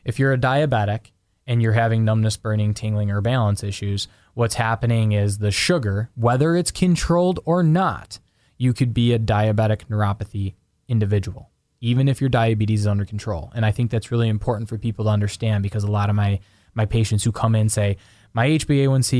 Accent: American